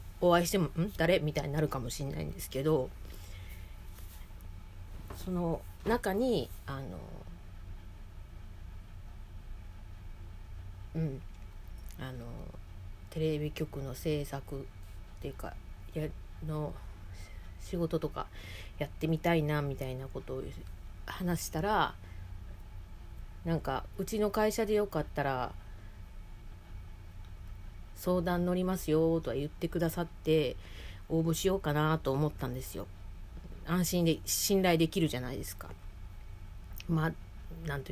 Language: Japanese